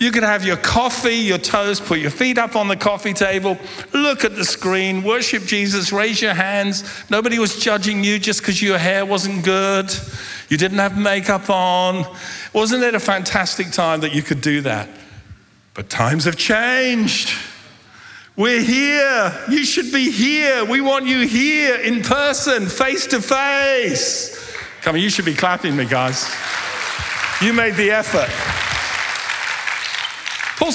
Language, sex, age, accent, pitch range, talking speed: English, male, 50-69, British, 190-255 Hz, 160 wpm